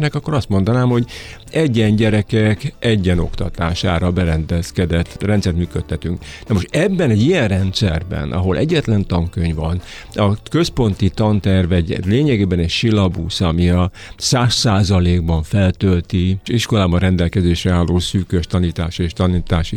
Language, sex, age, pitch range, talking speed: Hungarian, male, 60-79, 90-115 Hz, 120 wpm